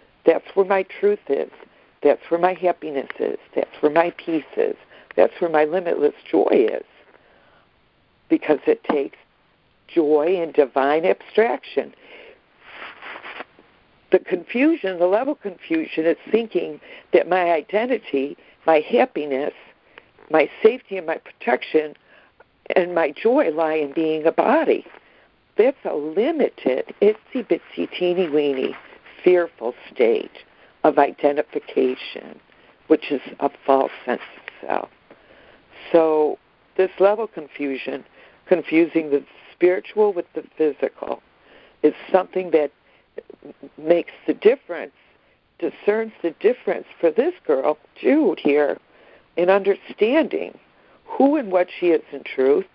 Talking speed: 120 wpm